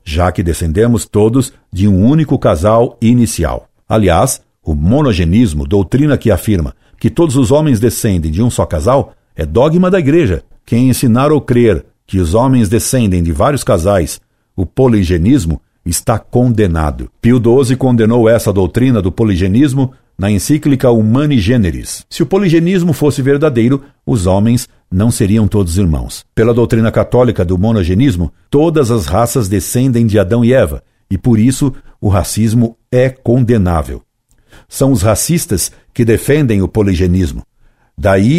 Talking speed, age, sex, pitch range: 145 wpm, 60-79, male, 95-125 Hz